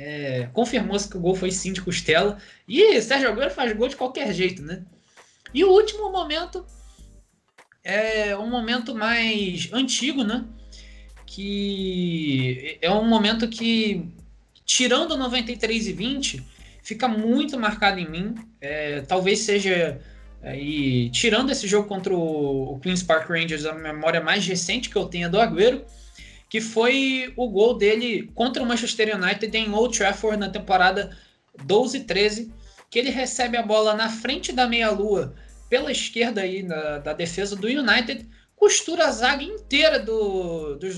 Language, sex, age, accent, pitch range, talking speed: Portuguese, male, 20-39, Brazilian, 190-250 Hz, 140 wpm